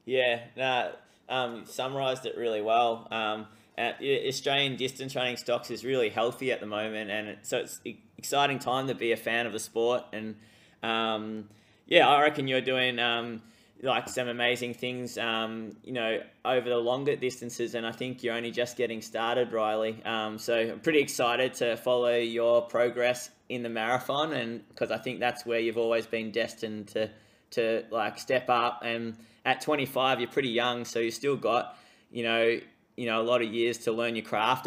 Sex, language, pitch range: male, English, 110-125 Hz